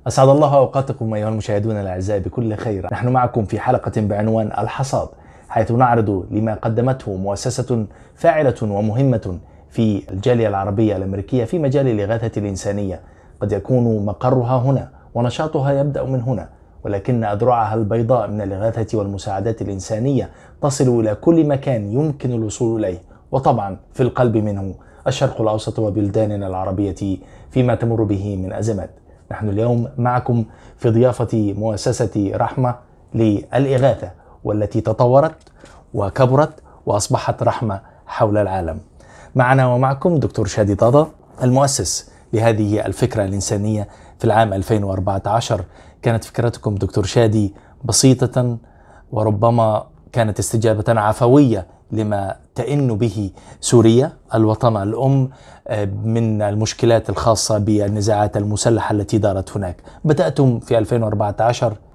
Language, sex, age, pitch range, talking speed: Arabic, male, 20-39, 100-125 Hz, 115 wpm